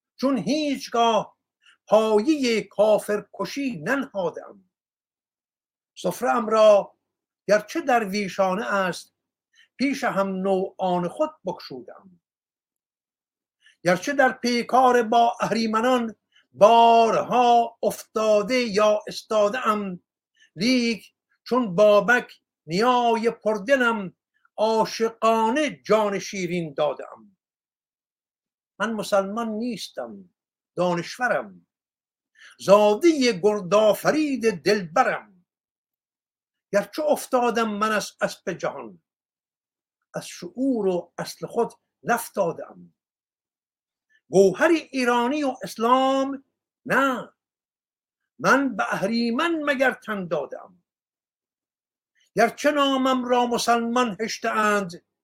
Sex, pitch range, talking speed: male, 200-250 Hz, 75 wpm